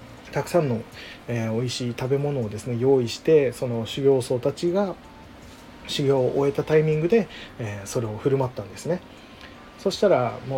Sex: male